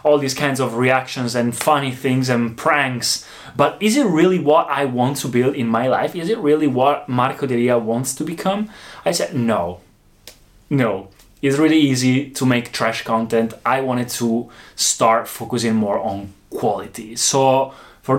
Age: 20-39